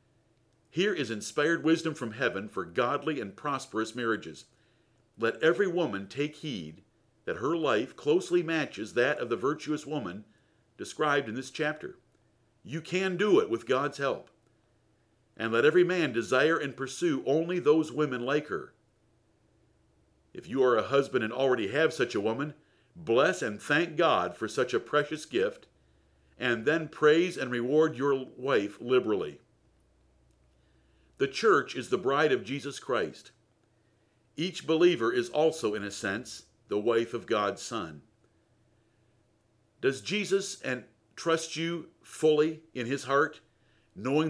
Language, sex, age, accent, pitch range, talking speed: English, male, 50-69, American, 115-155 Hz, 145 wpm